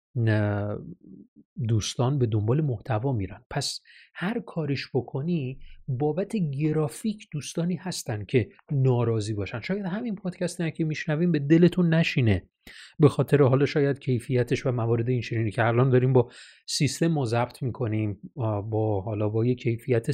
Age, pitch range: 30-49, 115-165 Hz